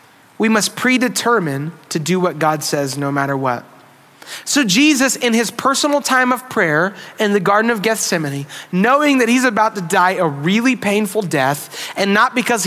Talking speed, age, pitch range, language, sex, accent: 175 wpm, 30-49, 175-245 Hz, English, male, American